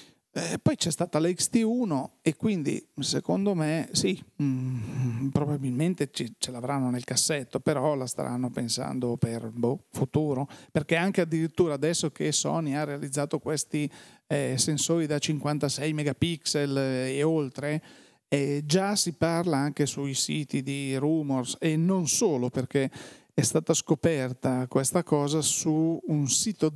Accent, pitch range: native, 130-165 Hz